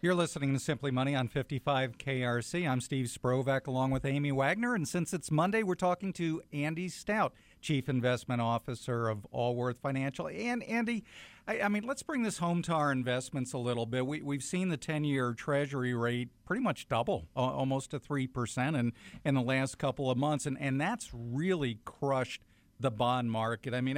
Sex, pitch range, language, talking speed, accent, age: male, 125-155 Hz, English, 185 wpm, American, 50-69